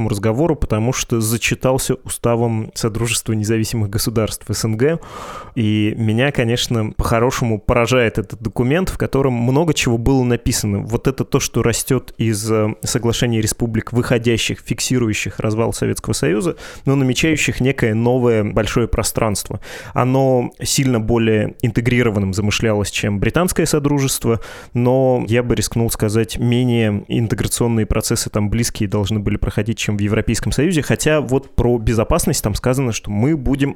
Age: 20-39